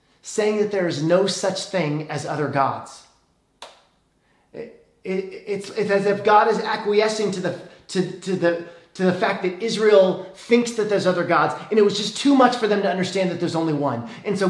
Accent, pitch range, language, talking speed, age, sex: American, 145-195 Hz, English, 190 wpm, 30-49, male